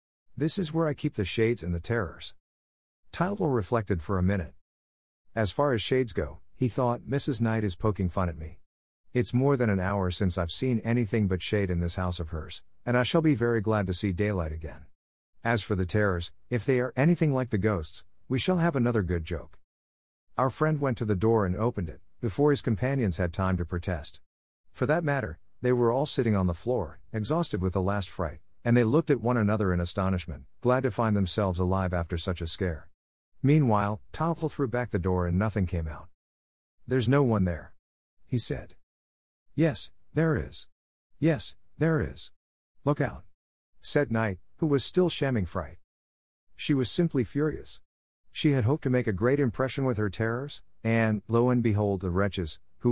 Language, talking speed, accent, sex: English, 195 wpm, American, male